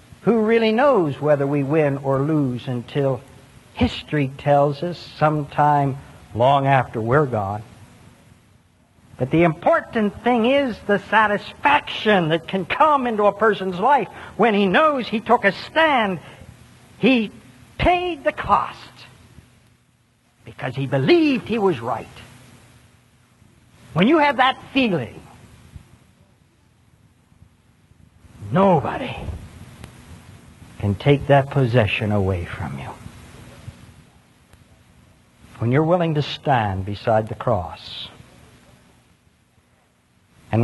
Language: English